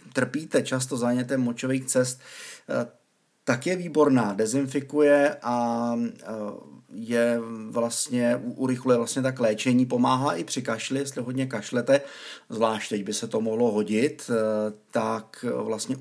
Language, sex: Czech, male